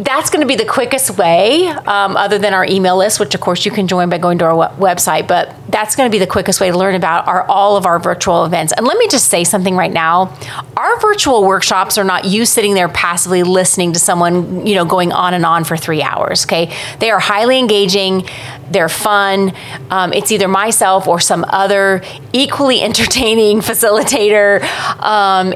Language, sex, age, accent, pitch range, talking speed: English, female, 30-49, American, 180-215 Hz, 205 wpm